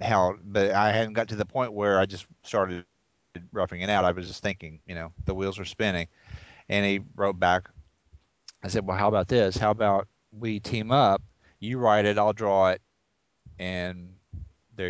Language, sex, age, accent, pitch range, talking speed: English, male, 40-59, American, 85-105 Hz, 195 wpm